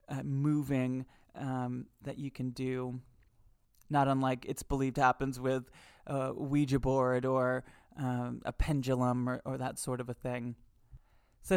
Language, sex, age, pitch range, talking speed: English, male, 20-39, 130-170 Hz, 145 wpm